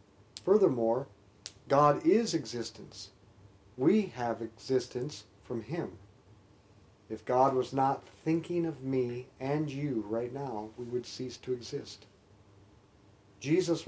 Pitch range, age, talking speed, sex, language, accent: 105-140 Hz, 50-69, 110 wpm, male, English, American